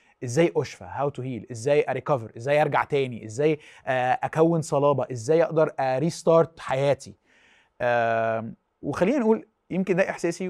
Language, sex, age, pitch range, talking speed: Arabic, male, 30-49, 120-155 Hz, 120 wpm